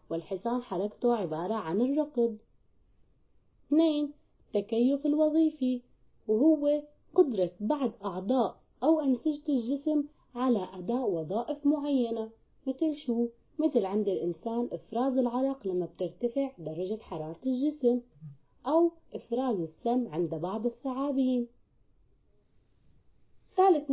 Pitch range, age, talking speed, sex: 195-285 Hz, 20-39, 95 wpm, female